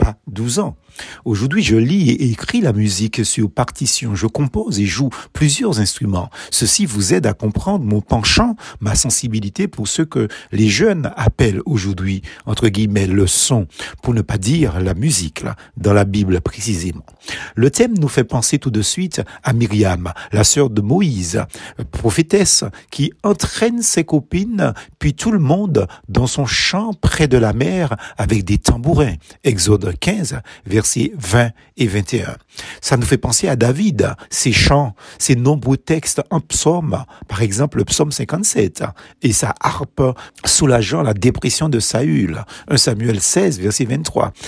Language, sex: French, male